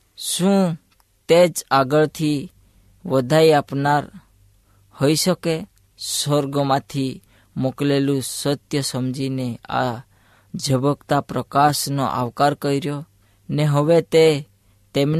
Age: 20-39